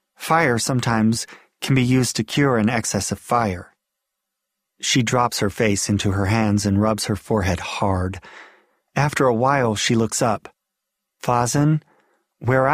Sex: male